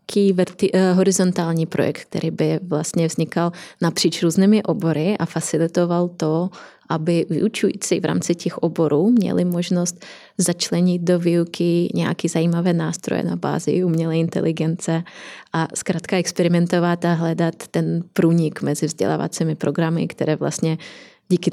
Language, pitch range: Czech, 155-175 Hz